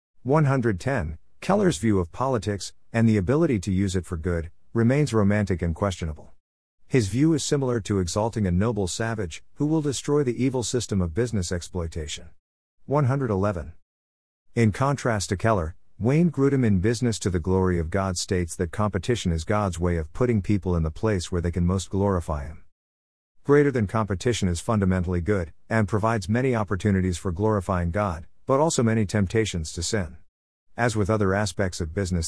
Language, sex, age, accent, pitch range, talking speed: English, male, 50-69, American, 90-120 Hz, 170 wpm